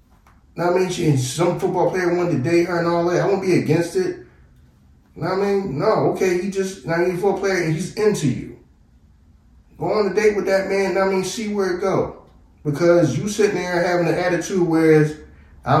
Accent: American